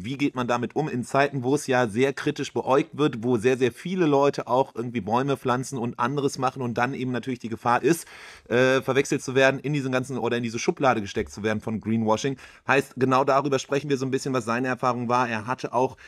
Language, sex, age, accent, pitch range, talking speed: English, male, 30-49, German, 125-145 Hz, 240 wpm